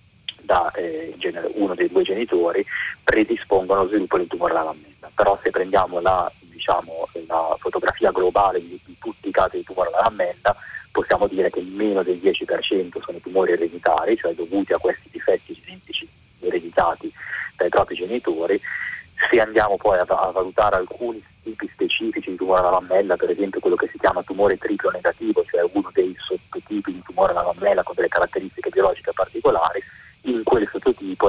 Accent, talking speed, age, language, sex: native, 170 wpm, 30-49, Italian, male